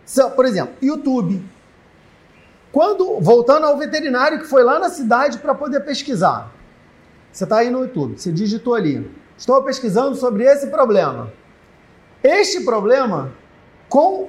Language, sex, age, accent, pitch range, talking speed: Portuguese, male, 40-59, Brazilian, 210-270 Hz, 135 wpm